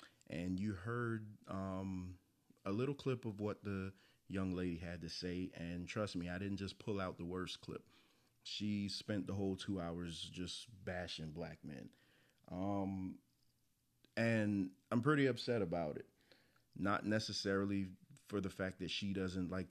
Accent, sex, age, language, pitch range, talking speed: American, male, 30-49, English, 90-105 Hz, 160 wpm